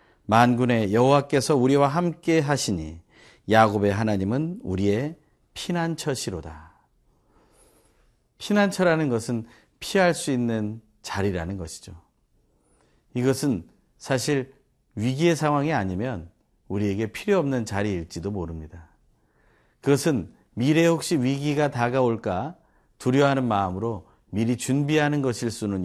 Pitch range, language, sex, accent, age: 100-140 Hz, Korean, male, native, 40-59